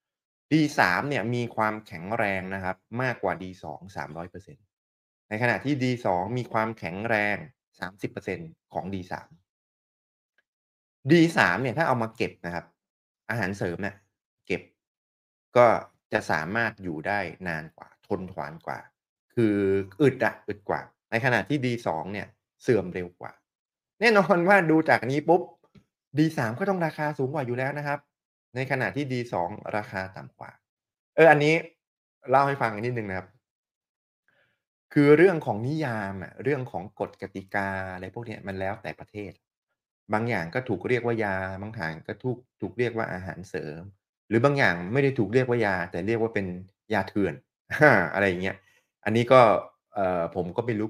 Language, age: Thai, 20-39